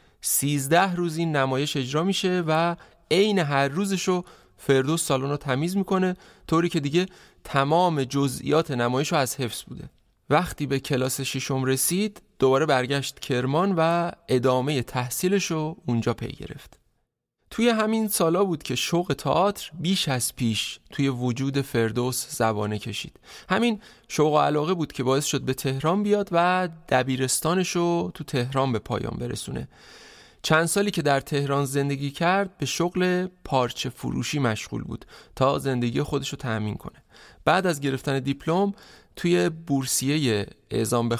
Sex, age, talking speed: male, 30-49, 145 wpm